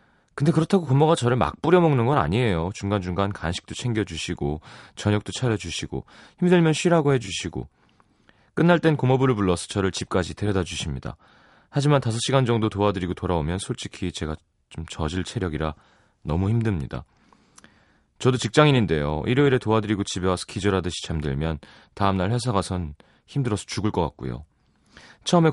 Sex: male